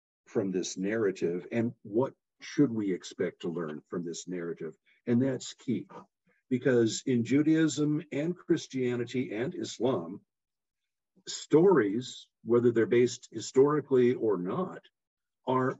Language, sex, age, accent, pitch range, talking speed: English, male, 50-69, American, 100-130 Hz, 120 wpm